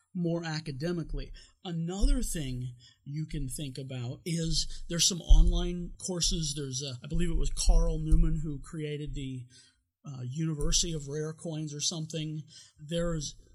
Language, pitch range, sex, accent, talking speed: English, 145-175 Hz, male, American, 135 wpm